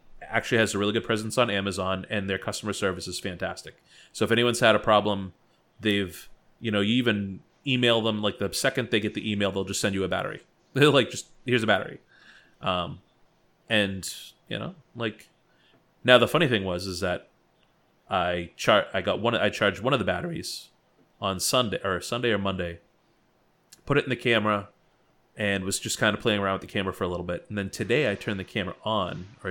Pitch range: 95-110 Hz